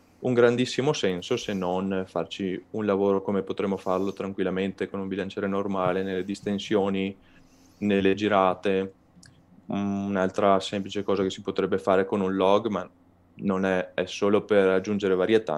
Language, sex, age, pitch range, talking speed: Italian, male, 20-39, 90-105 Hz, 145 wpm